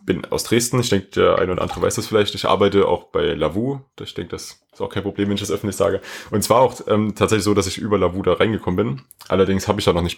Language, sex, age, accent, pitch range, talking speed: German, male, 30-49, German, 95-115 Hz, 290 wpm